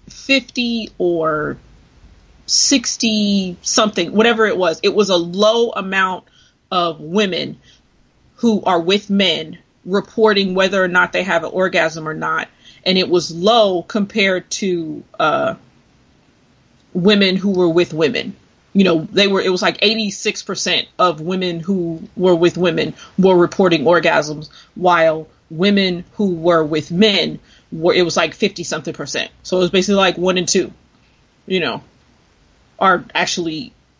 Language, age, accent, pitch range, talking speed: English, 30-49, American, 170-210 Hz, 145 wpm